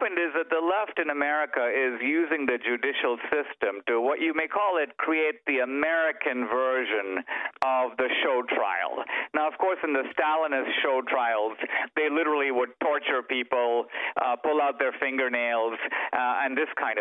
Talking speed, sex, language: 165 wpm, male, English